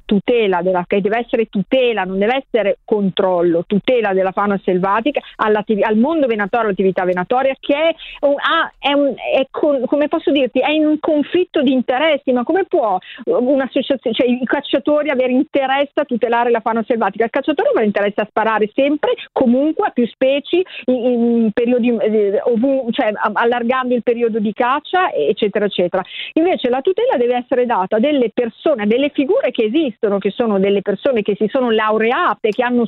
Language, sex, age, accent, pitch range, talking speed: Italian, female, 50-69, native, 210-280 Hz, 160 wpm